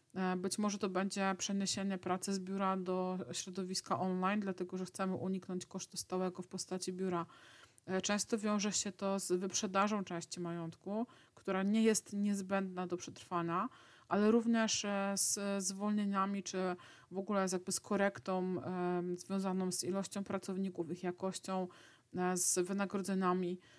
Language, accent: Polish, native